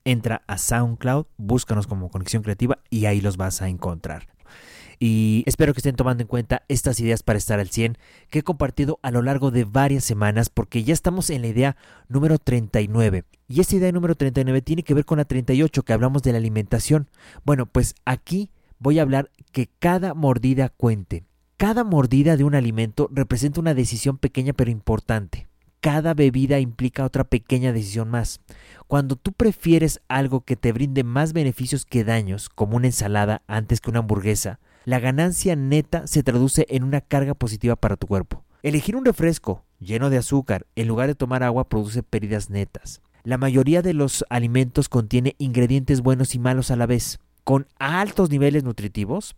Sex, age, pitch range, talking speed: male, 30-49, 115-140 Hz, 180 wpm